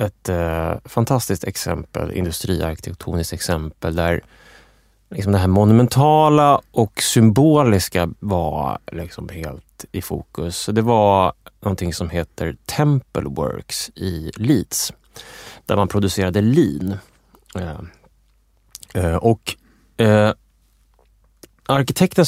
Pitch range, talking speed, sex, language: 90-120 Hz, 80 wpm, male, Swedish